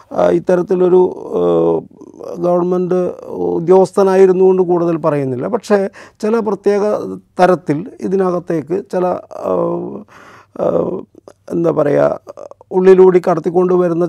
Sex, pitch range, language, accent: male, 150-190 Hz, Malayalam, native